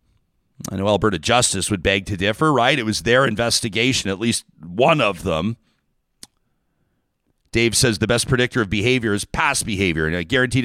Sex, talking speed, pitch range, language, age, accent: male, 175 wpm, 105-145 Hz, English, 40-59, American